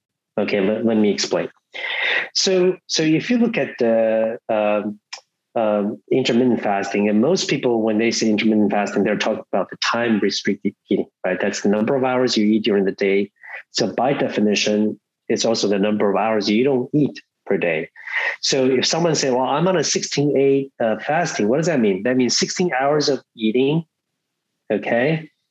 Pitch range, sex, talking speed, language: 105-155 Hz, male, 185 wpm, English